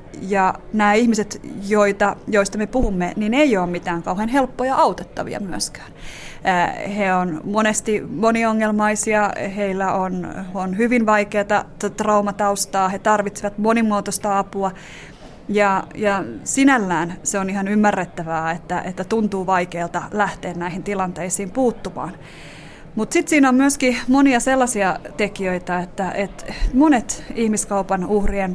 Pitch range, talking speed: 185-225 Hz, 120 wpm